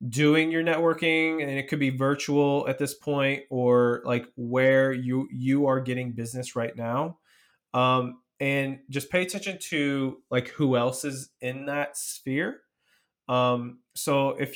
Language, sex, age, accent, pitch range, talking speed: English, male, 20-39, American, 125-145 Hz, 155 wpm